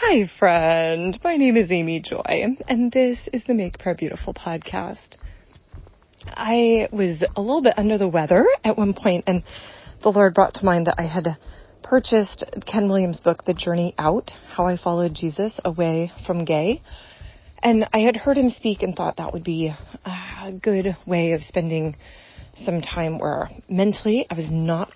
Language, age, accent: English, 30-49, American